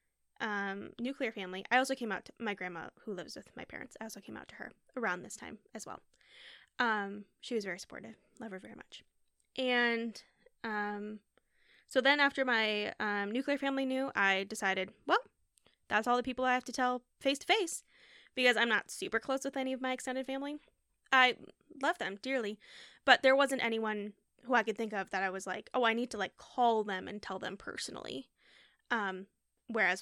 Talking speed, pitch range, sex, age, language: 200 wpm, 195-255 Hz, female, 10-29, English